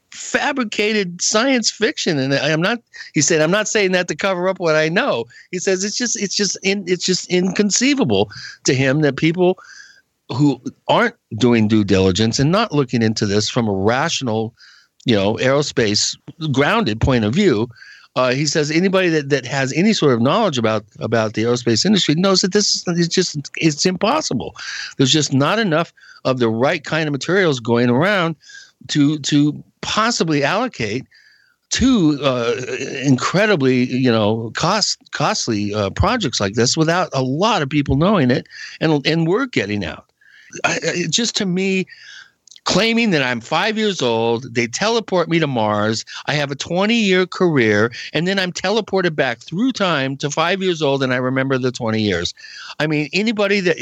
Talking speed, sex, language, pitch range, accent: 175 wpm, male, English, 125-190 Hz, American